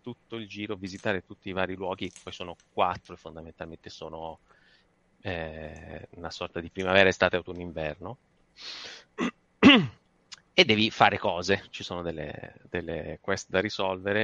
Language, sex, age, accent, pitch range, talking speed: Italian, male, 30-49, native, 85-100 Hz, 140 wpm